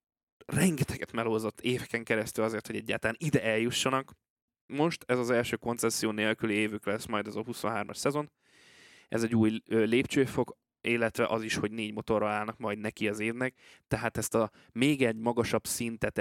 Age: 20-39